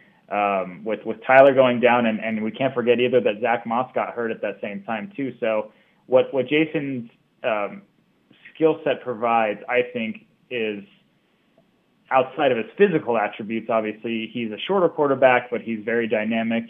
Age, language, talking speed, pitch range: 20-39, English, 170 wpm, 110-135 Hz